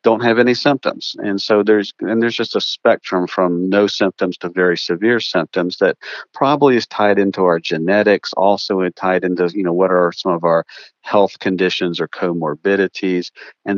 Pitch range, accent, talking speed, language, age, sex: 90-105 Hz, American, 180 wpm, English, 50-69, male